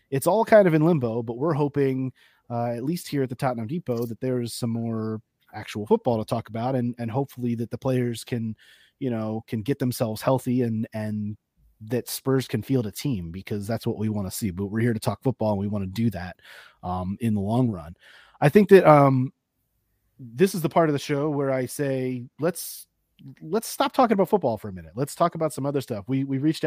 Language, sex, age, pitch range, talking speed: English, male, 30-49, 120-155 Hz, 230 wpm